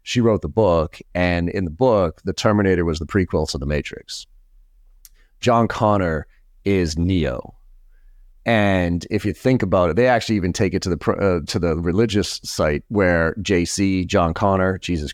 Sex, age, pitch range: male, 30-49, 85-105 Hz